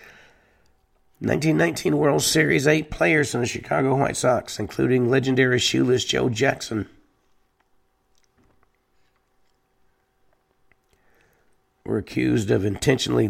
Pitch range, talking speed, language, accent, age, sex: 110-130 Hz, 85 wpm, English, American, 50-69, male